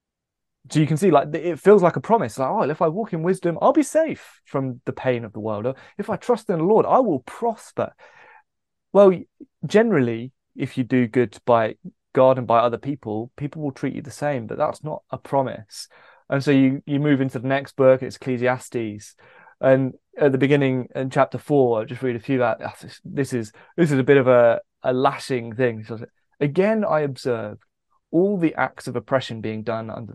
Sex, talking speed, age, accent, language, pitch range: male, 210 wpm, 20-39, British, English, 120-160 Hz